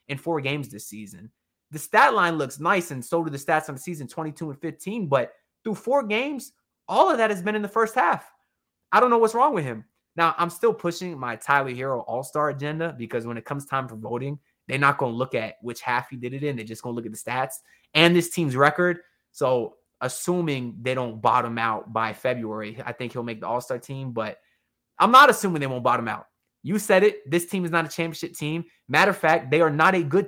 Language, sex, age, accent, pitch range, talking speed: English, male, 20-39, American, 125-165 Hz, 240 wpm